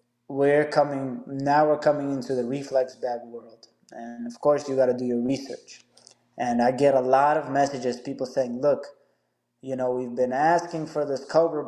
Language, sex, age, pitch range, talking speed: English, male, 20-39, 130-160 Hz, 190 wpm